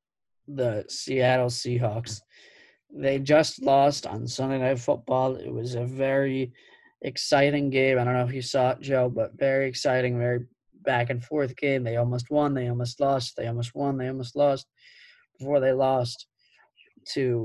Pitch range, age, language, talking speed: 120-135 Hz, 20-39, English, 165 wpm